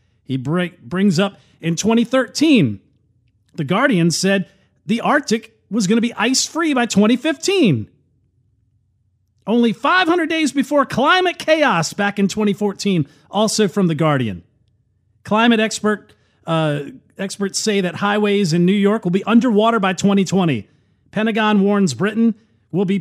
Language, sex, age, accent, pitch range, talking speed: English, male, 40-59, American, 165-240 Hz, 130 wpm